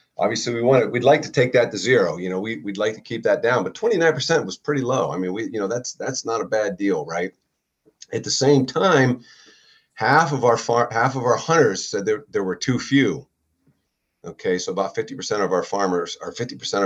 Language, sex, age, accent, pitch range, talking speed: English, male, 40-59, American, 100-145 Hz, 225 wpm